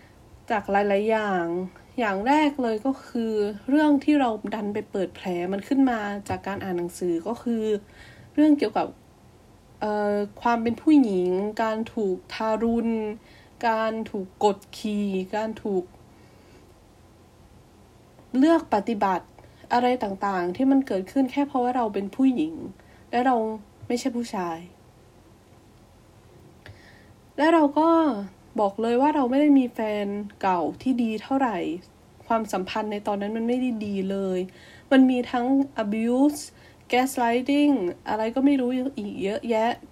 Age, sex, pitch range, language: 20-39, female, 185-250 Hz, Thai